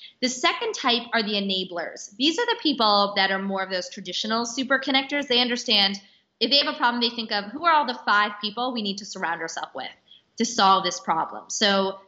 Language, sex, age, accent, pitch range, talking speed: English, female, 20-39, American, 200-260 Hz, 225 wpm